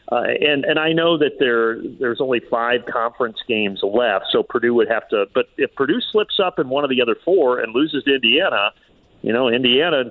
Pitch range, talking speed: 115-155 Hz, 220 wpm